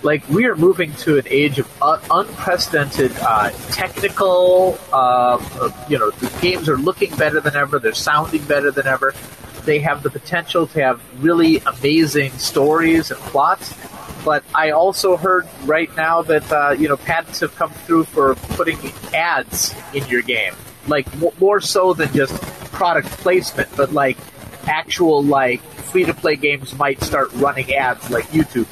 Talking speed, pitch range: 160 wpm, 135-170 Hz